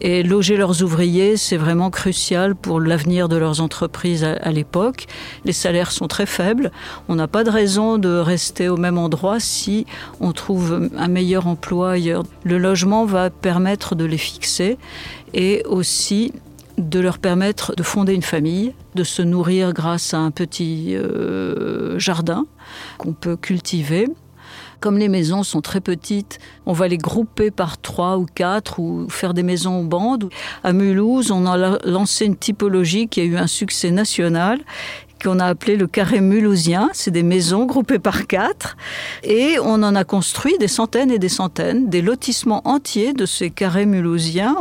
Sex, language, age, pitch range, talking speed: female, French, 50-69, 175-215 Hz, 170 wpm